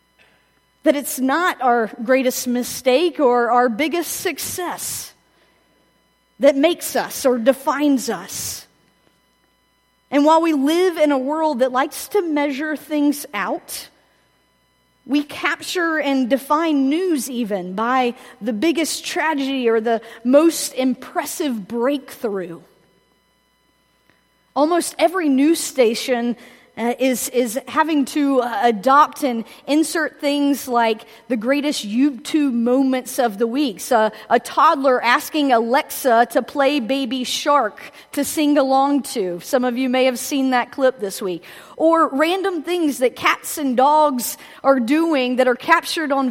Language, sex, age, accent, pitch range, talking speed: English, female, 40-59, American, 245-300 Hz, 135 wpm